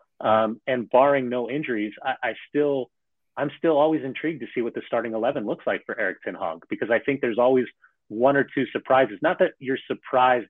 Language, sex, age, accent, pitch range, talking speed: English, male, 30-49, American, 110-135 Hz, 205 wpm